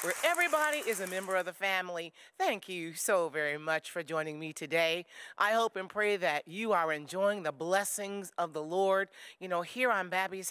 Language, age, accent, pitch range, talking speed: English, 40-59, American, 160-210 Hz, 200 wpm